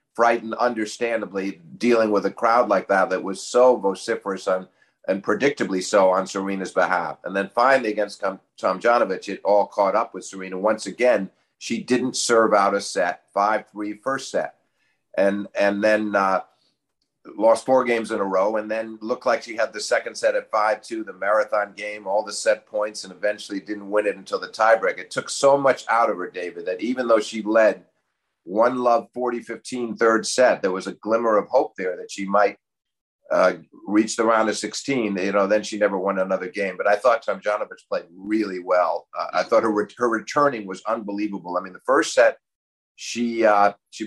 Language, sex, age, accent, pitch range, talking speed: English, male, 50-69, American, 100-120 Hz, 200 wpm